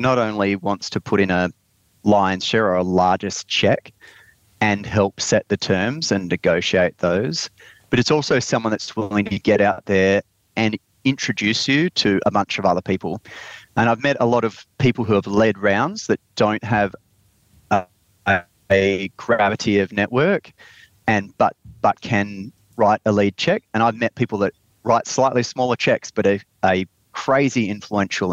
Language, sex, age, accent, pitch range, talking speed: English, male, 30-49, Australian, 95-115 Hz, 170 wpm